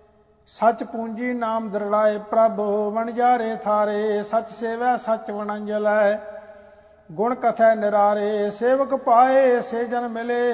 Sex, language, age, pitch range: male, English, 50-69, 210-240 Hz